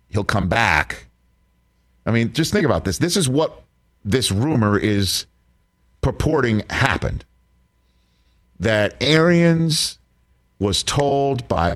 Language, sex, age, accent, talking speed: English, male, 50-69, American, 110 wpm